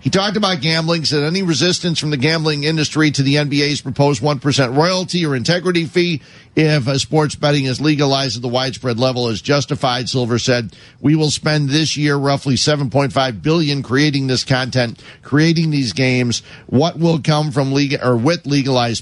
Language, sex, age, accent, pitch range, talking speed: English, male, 50-69, American, 125-155 Hz, 175 wpm